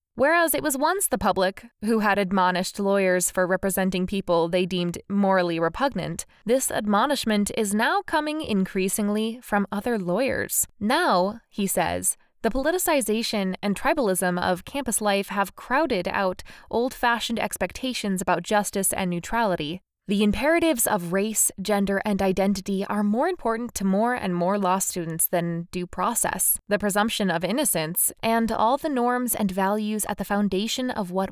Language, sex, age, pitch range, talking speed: English, female, 20-39, 190-235 Hz, 150 wpm